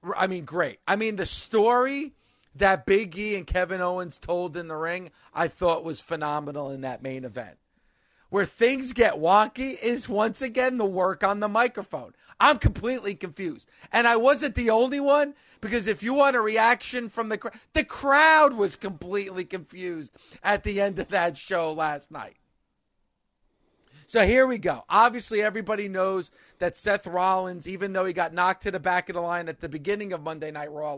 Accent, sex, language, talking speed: American, male, English, 185 wpm